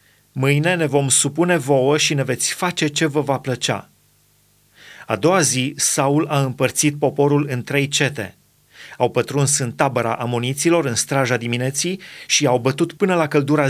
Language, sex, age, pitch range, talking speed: Romanian, male, 30-49, 125-150 Hz, 160 wpm